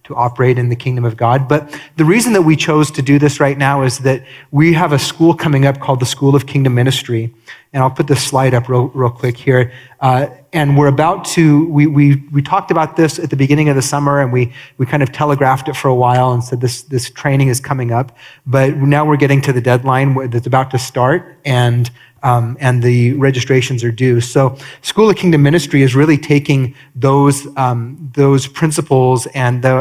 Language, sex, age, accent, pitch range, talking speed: English, male, 30-49, American, 125-145 Hz, 220 wpm